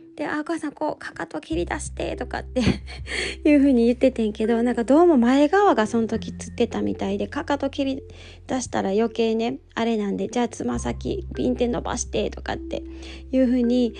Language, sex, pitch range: Japanese, female, 205-275 Hz